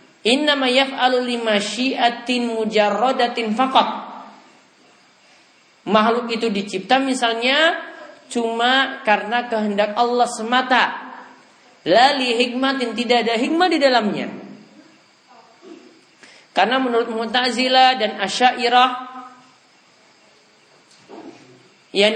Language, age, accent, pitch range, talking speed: Indonesian, 40-59, native, 225-275 Hz, 65 wpm